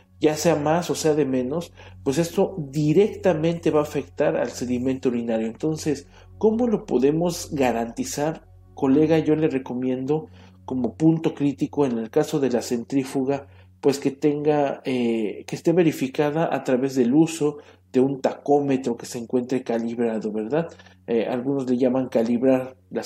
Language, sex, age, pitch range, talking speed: English, male, 50-69, 120-155 Hz, 155 wpm